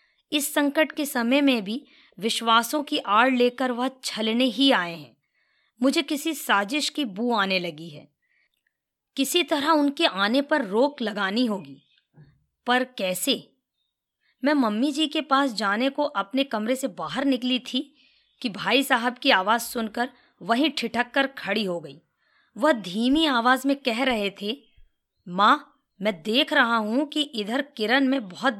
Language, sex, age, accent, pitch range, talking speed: Hindi, female, 20-39, native, 215-290 Hz, 155 wpm